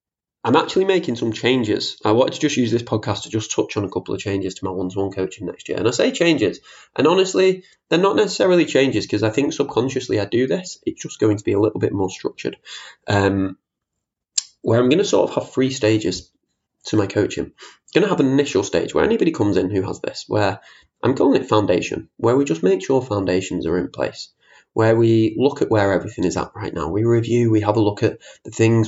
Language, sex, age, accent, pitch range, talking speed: English, male, 20-39, British, 105-135 Hz, 240 wpm